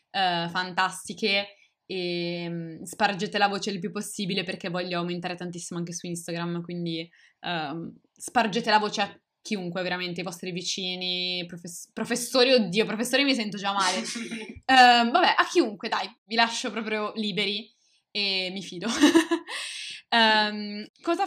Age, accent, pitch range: 20-39, native, 180-215 Hz